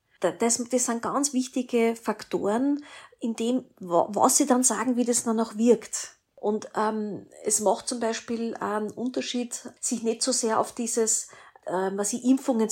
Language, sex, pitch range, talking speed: German, female, 185-240 Hz, 165 wpm